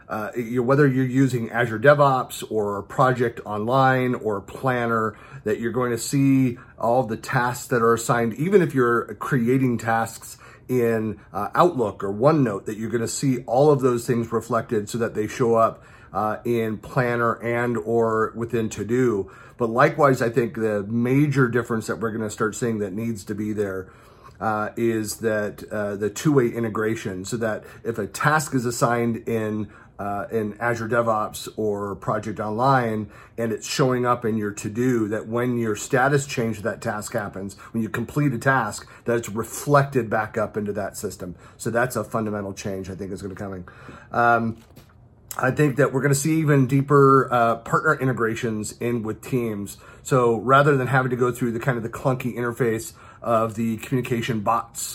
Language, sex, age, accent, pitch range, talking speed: English, male, 40-59, American, 110-130 Hz, 180 wpm